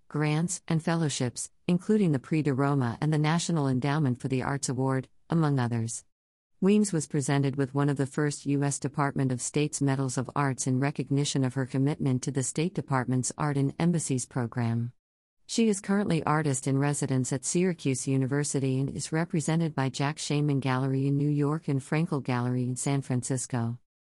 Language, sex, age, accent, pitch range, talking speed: English, female, 50-69, American, 130-160 Hz, 170 wpm